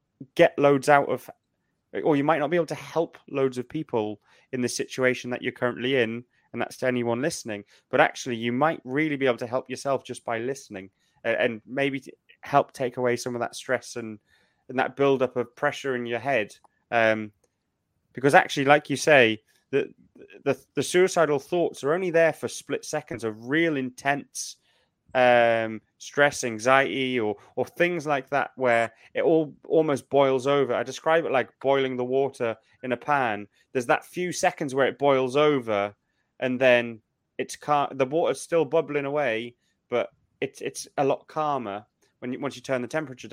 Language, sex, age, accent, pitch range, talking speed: English, male, 20-39, British, 120-150 Hz, 185 wpm